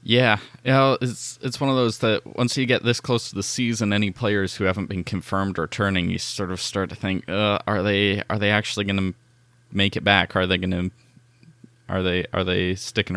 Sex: male